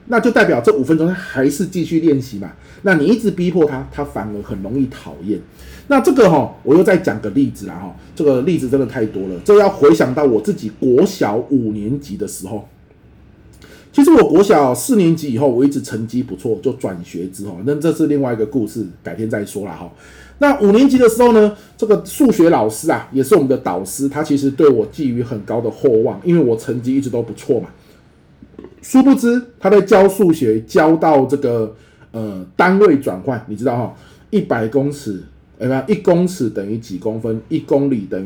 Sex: male